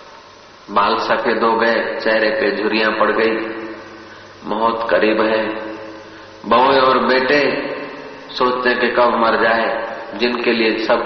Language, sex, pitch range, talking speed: Hindi, male, 110-140 Hz, 125 wpm